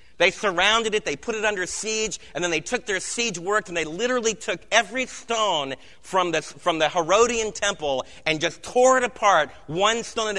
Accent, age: American, 40-59